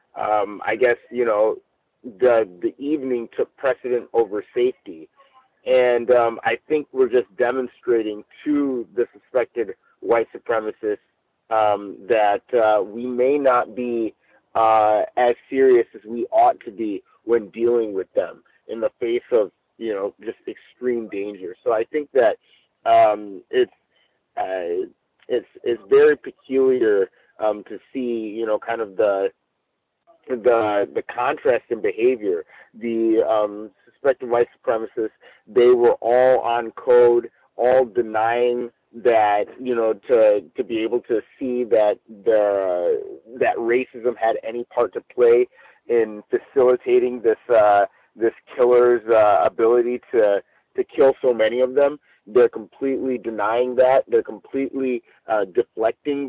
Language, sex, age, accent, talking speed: English, male, 30-49, American, 140 wpm